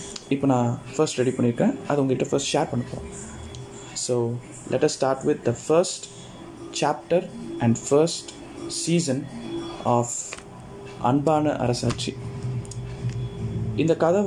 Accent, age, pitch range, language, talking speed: native, 20-39, 125-160 Hz, Tamil, 110 wpm